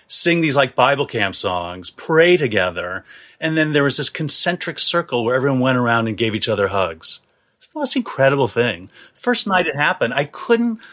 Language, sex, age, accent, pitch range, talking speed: English, male, 30-49, American, 110-155 Hz, 190 wpm